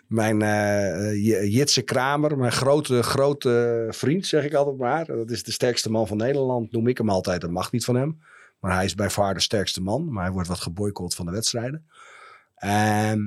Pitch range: 105-135 Hz